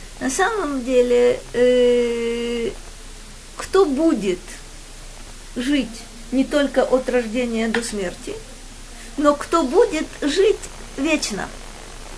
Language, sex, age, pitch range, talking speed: Russian, female, 40-59, 205-265 Hz, 90 wpm